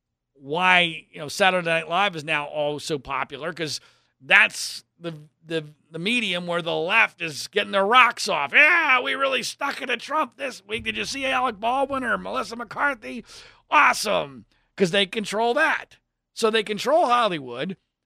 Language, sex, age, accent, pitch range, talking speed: English, male, 40-59, American, 165-245 Hz, 170 wpm